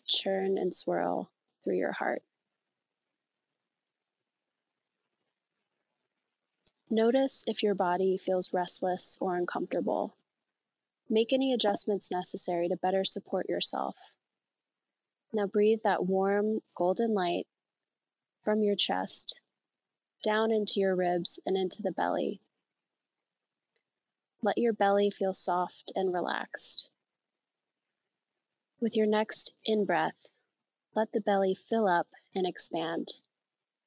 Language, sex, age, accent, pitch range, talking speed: English, female, 20-39, American, 185-215 Hz, 105 wpm